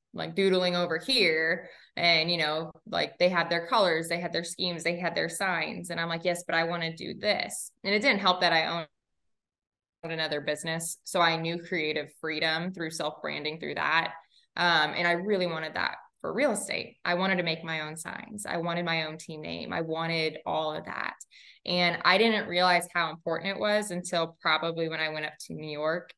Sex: female